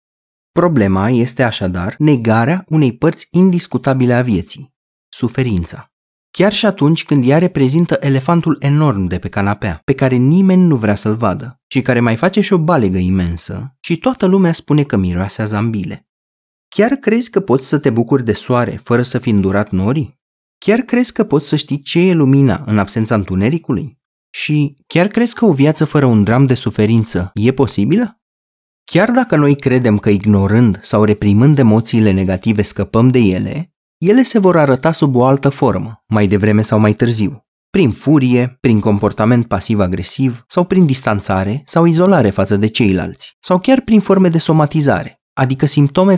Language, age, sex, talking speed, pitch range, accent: Romanian, 30-49, male, 170 wpm, 105-160 Hz, native